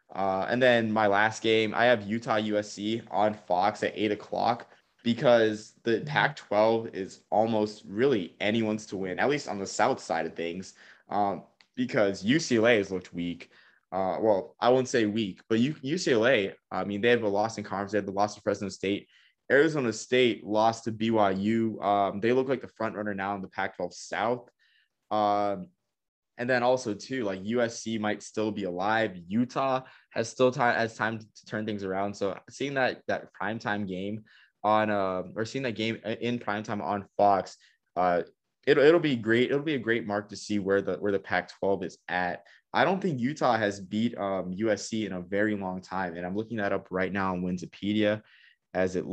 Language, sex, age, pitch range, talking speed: English, male, 20-39, 95-115 Hz, 195 wpm